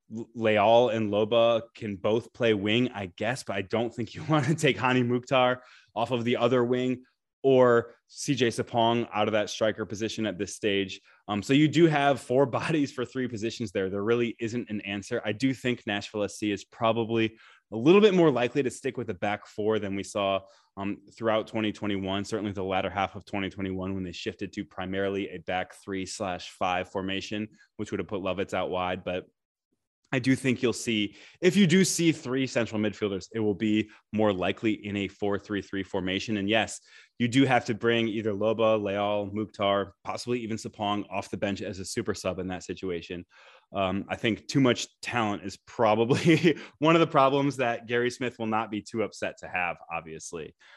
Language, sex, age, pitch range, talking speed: English, male, 20-39, 100-120 Hz, 200 wpm